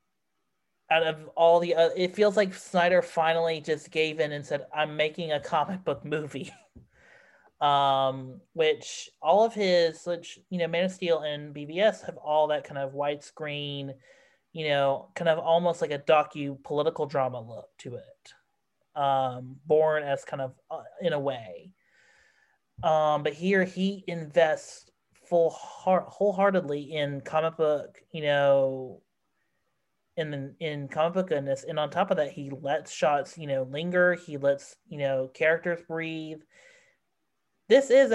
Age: 30-49